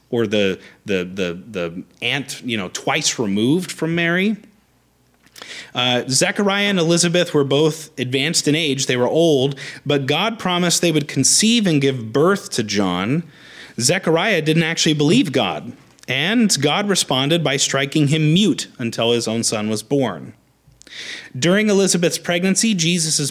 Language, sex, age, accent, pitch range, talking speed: English, male, 30-49, American, 130-180 Hz, 145 wpm